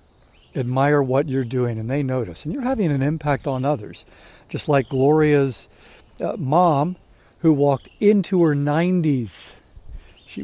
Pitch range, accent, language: 125-160 Hz, American, English